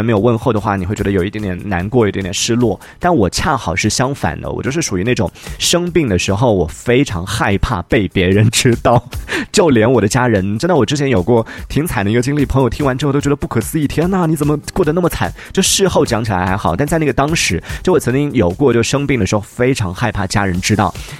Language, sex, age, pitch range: Chinese, male, 30-49, 95-125 Hz